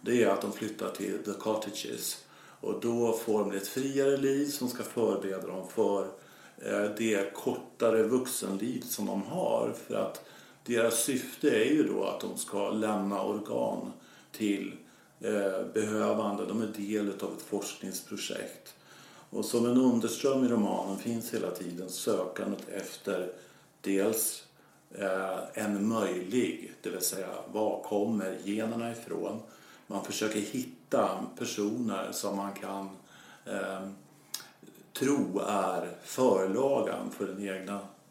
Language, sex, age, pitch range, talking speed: English, male, 50-69, 95-115 Hz, 130 wpm